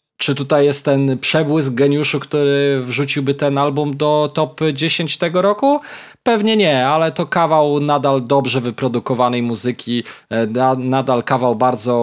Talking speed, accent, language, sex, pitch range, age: 135 wpm, native, Polish, male, 115-140 Hz, 20-39